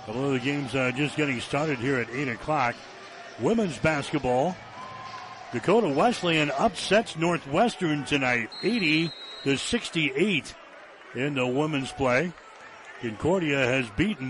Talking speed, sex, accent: 125 wpm, male, American